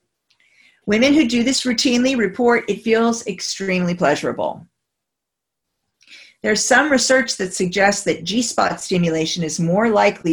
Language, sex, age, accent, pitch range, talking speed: English, female, 40-59, American, 180-230 Hz, 120 wpm